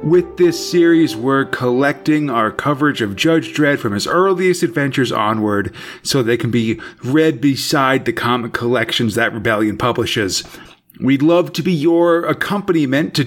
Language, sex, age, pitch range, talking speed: English, male, 30-49, 130-170 Hz, 155 wpm